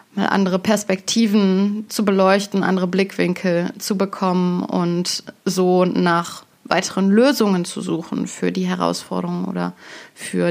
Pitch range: 185-235 Hz